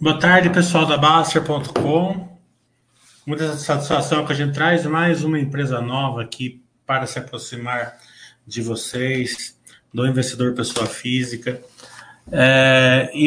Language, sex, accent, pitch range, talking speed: Portuguese, male, Brazilian, 120-145 Hz, 120 wpm